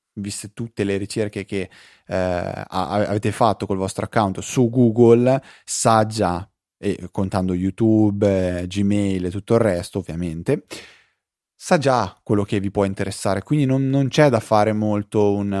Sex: male